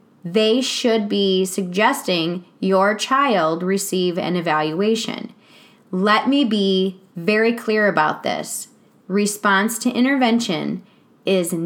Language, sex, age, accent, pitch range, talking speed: English, female, 20-39, American, 185-225 Hz, 105 wpm